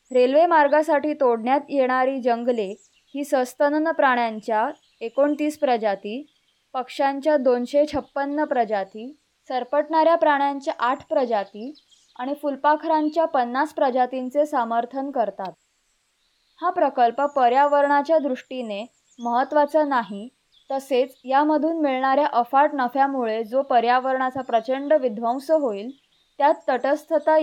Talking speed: 90 wpm